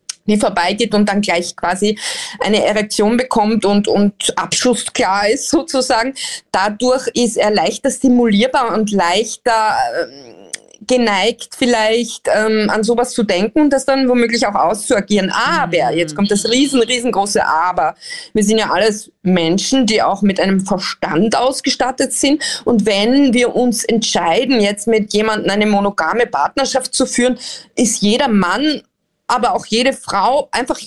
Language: German